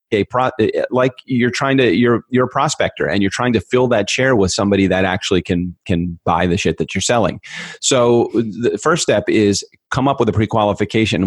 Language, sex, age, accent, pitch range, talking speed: English, male, 40-59, American, 95-110 Hz, 210 wpm